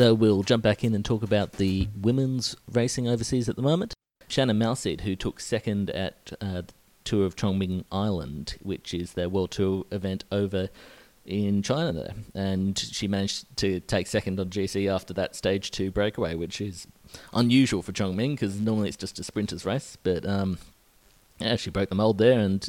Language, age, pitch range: English, 30-49, 95-115 Hz